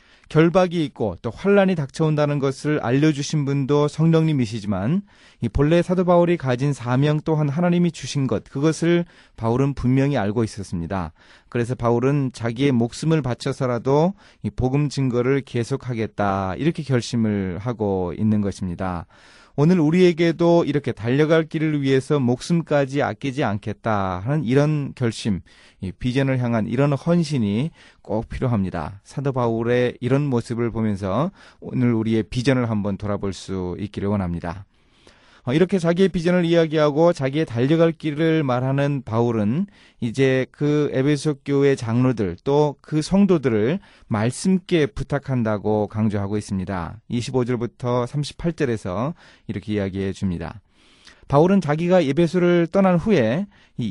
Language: Korean